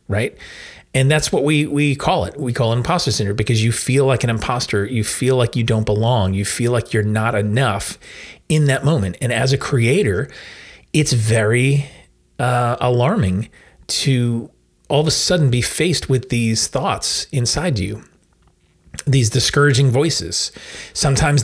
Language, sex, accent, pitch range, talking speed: English, male, American, 110-135 Hz, 160 wpm